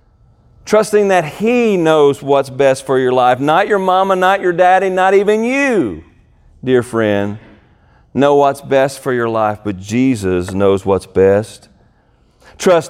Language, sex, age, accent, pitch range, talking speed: English, male, 40-59, American, 120-175 Hz, 150 wpm